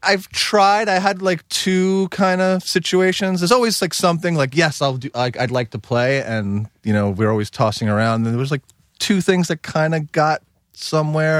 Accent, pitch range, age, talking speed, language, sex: American, 95-140 Hz, 30-49, 215 wpm, English, male